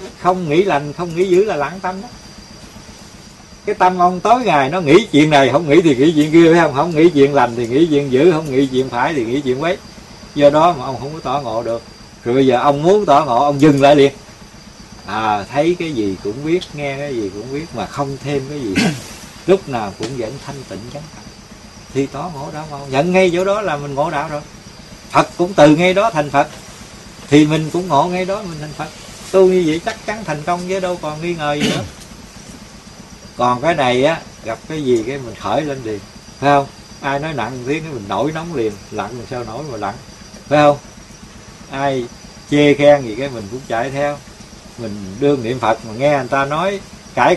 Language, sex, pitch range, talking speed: Vietnamese, male, 135-175 Hz, 225 wpm